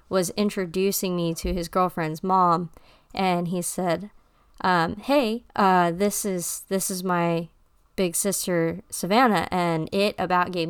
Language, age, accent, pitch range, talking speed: English, 20-39, American, 170-200 Hz, 140 wpm